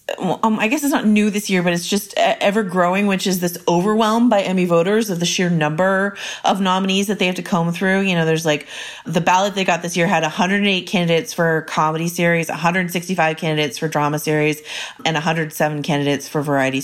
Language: English